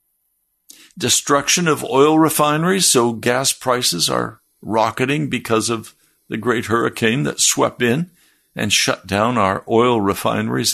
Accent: American